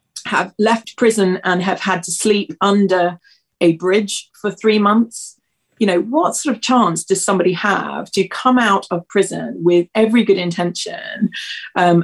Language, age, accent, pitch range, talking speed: English, 30-49, British, 175-210 Hz, 165 wpm